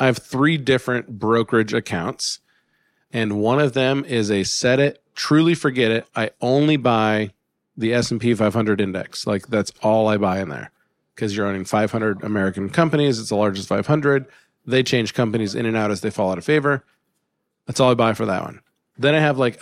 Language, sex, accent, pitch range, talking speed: English, male, American, 105-130 Hz, 195 wpm